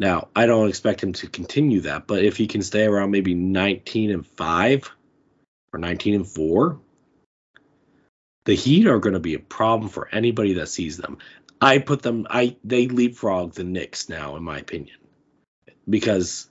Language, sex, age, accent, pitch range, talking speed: English, male, 30-49, American, 100-130 Hz, 175 wpm